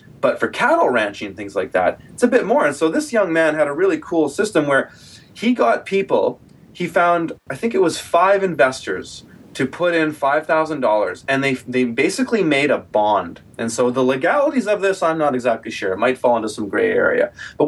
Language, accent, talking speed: English, American, 215 wpm